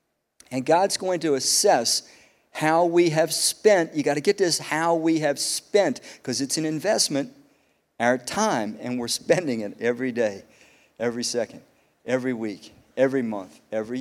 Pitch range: 135-175 Hz